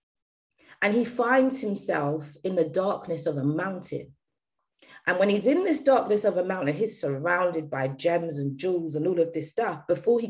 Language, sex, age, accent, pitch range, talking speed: English, female, 30-49, British, 165-240 Hz, 185 wpm